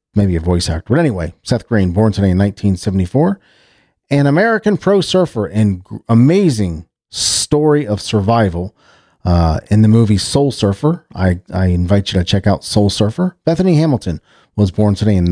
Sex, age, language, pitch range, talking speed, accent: male, 40-59, English, 100-150 Hz, 165 wpm, American